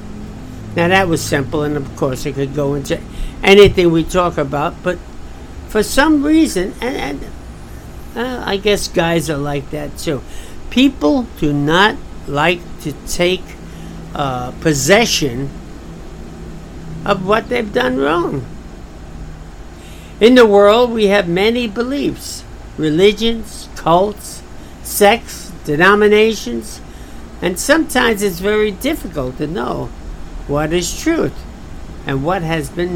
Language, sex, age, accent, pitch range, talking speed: English, male, 60-79, American, 140-225 Hz, 120 wpm